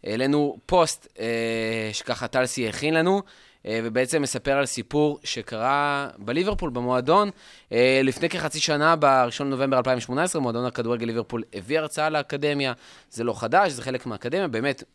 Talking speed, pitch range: 130 wpm, 120-160 Hz